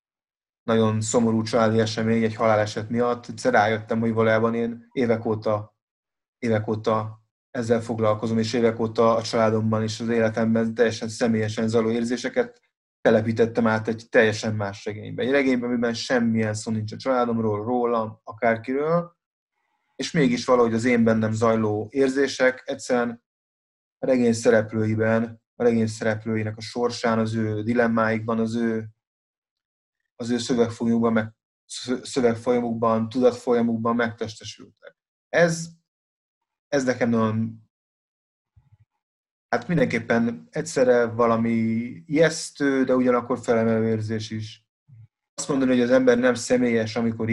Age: 30-49